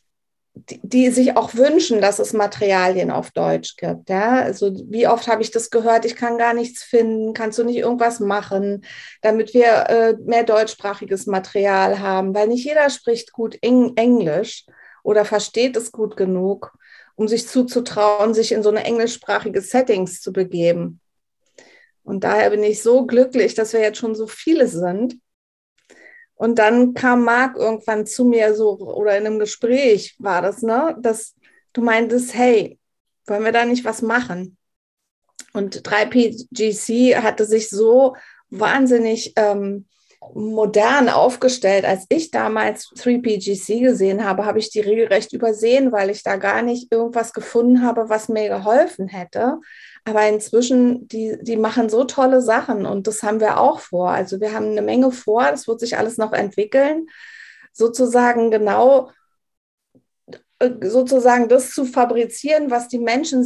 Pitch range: 210-245 Hz